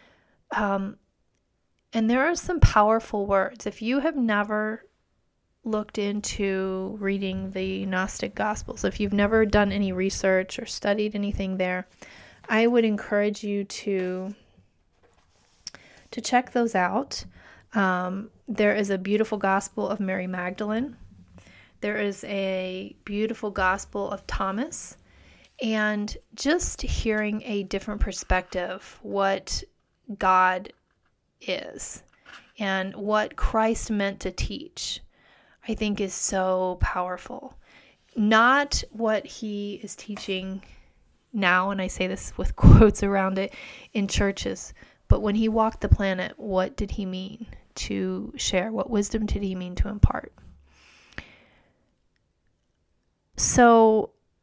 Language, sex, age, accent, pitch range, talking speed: English, female, 30-49, American, 185-215 Hz, 120 wpm